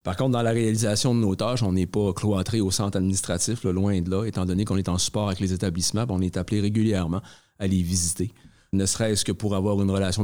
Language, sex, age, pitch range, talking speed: French, male, 40-59, 100-115 Hz, 250 wpm